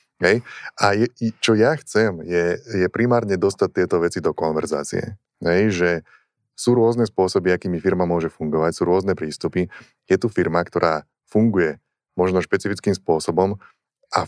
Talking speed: 145 wpm